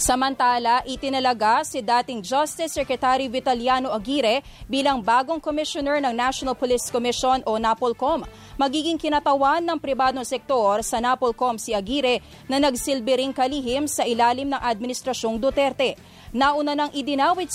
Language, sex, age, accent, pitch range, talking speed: English, female, 20-39, Filipino, 240-275 Hz, 125 wpm